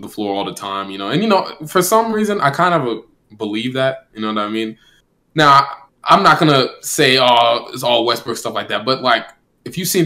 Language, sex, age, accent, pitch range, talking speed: English, male, 20-39, American, 105-135 Hz, 240 wpm